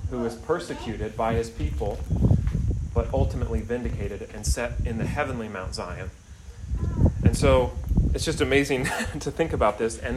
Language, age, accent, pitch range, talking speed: English, 30-49, American, 95-120 Hz, 155 wpm